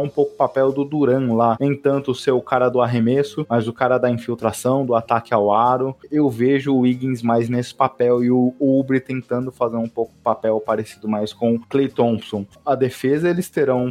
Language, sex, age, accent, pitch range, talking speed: Portuguese, male, 20-39, Brazilian, 115-135 Hz, 215 wpm